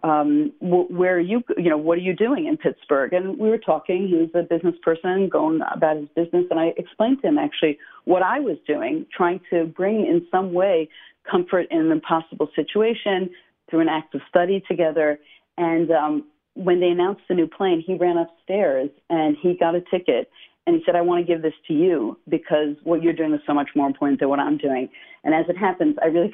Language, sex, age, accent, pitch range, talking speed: English, female, 40-59, American, 160-195 Hz, 220 wpm